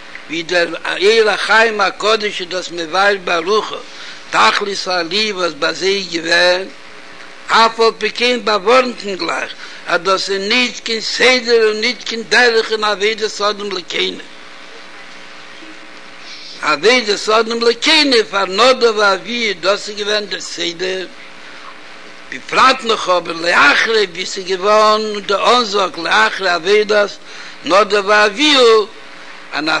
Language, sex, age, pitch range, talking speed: Hebrew, male, 60-79, 180-235 Hz, 95 wpm